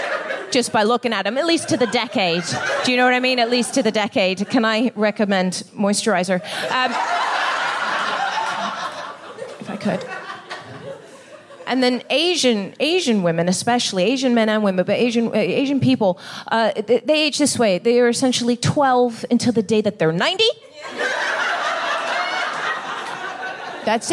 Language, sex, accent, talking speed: English, female, American, 150 wpm